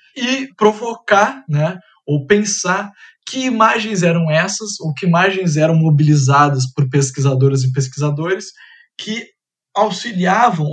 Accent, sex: Brazilian, male